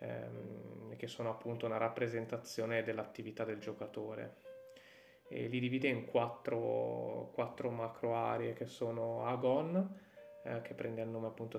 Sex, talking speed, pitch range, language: male, 125 wpm, 110-125 Hz, Italian